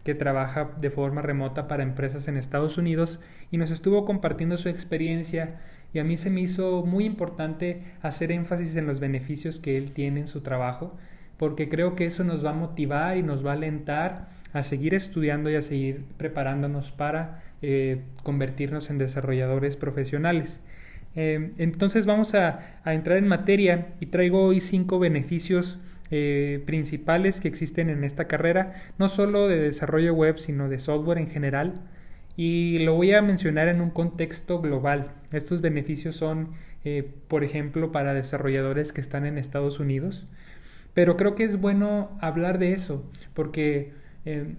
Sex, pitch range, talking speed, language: male, 145-175 Hz, 165 wpm, Spanish